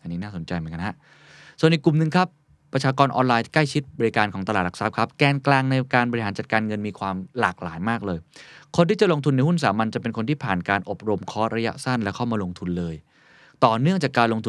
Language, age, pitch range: Thai, 20-39, 100-145 Hz